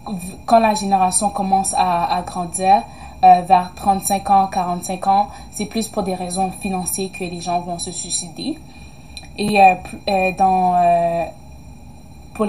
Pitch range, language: 175-200 Hz, French